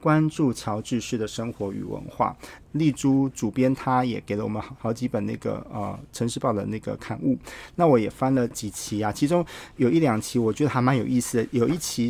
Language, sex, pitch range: Chinese, male, 115-145 Hz